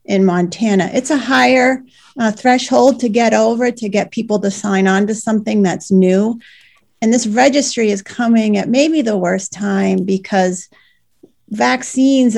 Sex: female